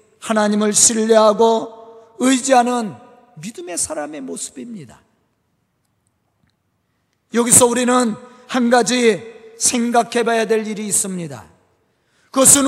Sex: male